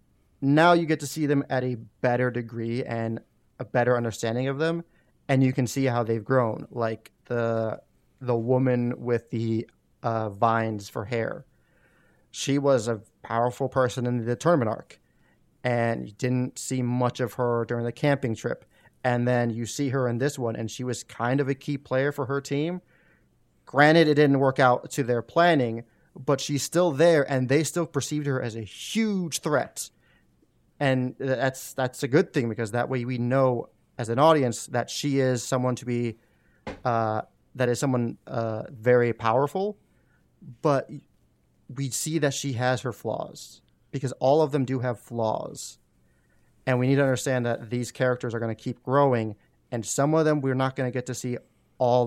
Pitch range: 115-140 Hz